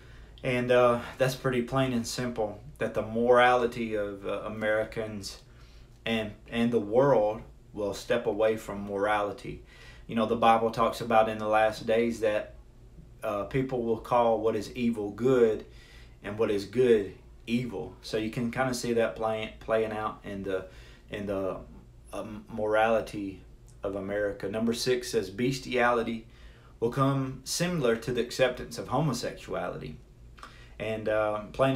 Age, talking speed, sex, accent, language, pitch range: 30-49, 150 wpm, male, American, English, 105-125 Hz